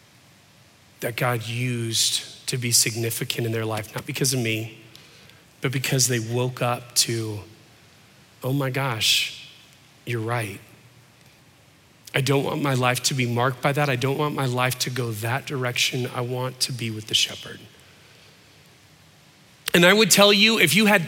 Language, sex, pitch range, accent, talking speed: English, male, 125-175 Hz, American, 165 wpm